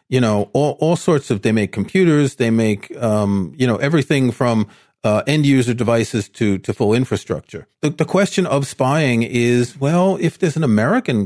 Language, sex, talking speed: English, male, 180 wpm